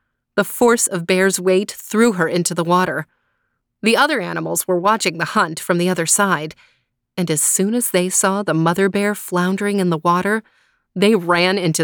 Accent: American